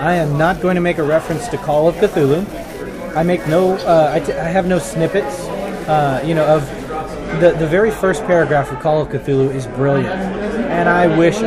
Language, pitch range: English, 150-180 Hz